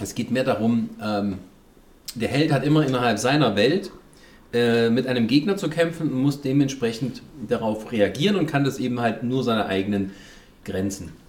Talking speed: 170 wpm